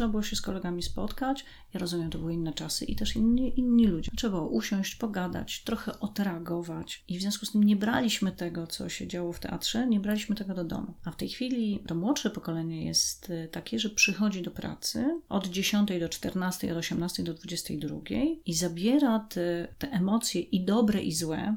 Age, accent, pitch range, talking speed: 30-49, native, 175-215 Hz, 200 wpm